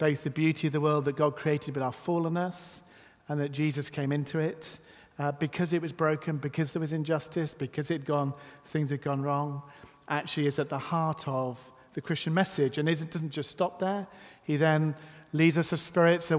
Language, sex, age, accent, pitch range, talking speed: English, male, 40-59, British, 145-165 Hz, 205 wpm